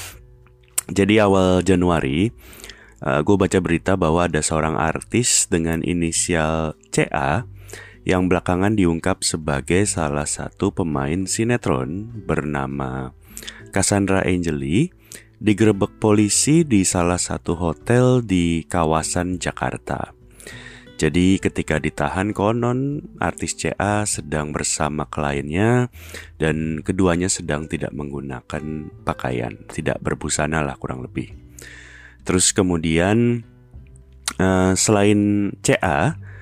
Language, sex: Indonesian, male